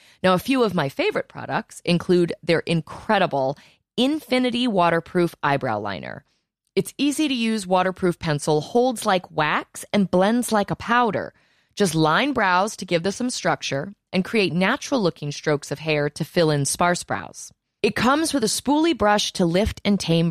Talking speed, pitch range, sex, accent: 165 wpm, 150-220 Hz, female, American